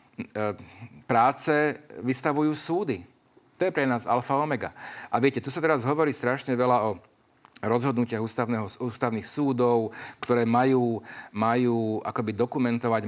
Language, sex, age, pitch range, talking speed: Slovak, male, 40-59, 115-140 Hz, 120 wpm